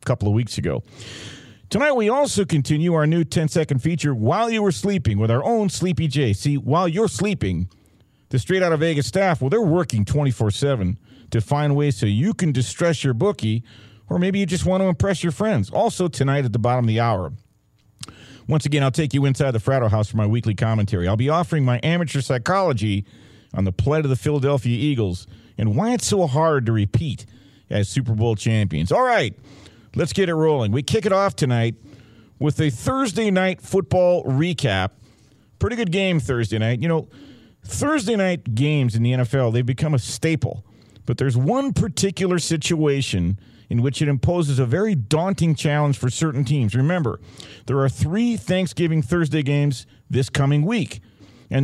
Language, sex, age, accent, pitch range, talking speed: English, male, 50-69, American, 115-165 Hz, 185 wpm